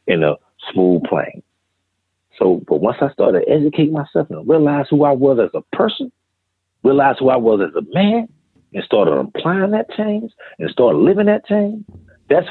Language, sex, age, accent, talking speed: English, male, 40-59, American, 175 wpm